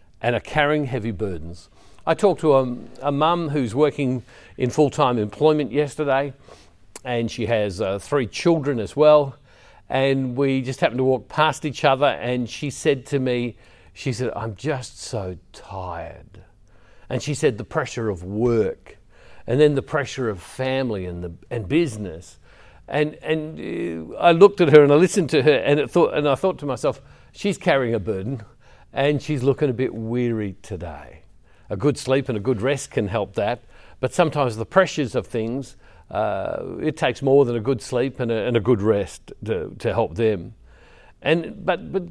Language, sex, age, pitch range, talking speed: English, male, 50-69, 110-150 Hz, 185 wpm